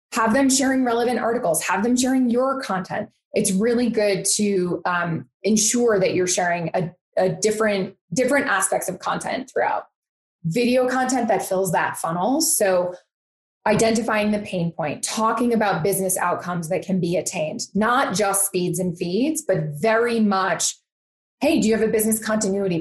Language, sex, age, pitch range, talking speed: English, female, 20-39, 190-240 Hz, 160 wpm